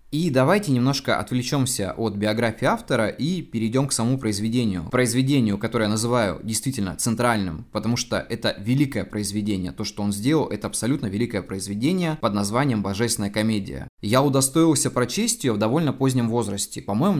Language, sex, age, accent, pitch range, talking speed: Russian, male, 20-39, native, 105-135 Hz, 155 wpm